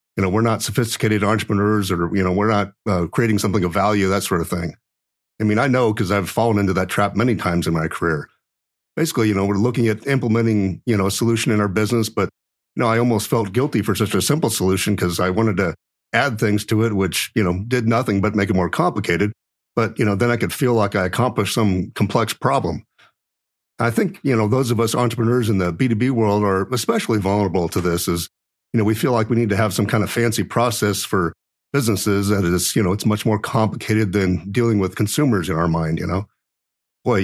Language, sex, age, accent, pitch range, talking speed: English, male, 50-69, American, 95-115 Hz, 230 wpm